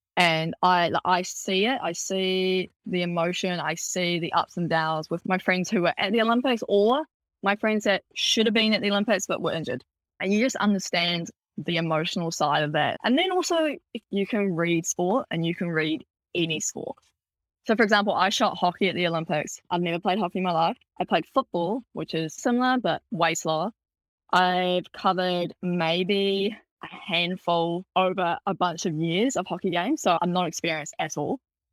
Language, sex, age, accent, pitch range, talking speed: English, female, 10-29, Australian, 165-200 Hz, 195 wpm